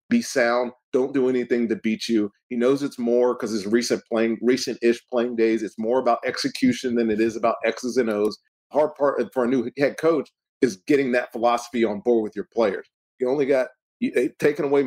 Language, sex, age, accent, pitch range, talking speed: English, male, 40-59, American, 110-130 Hz, 220 wpm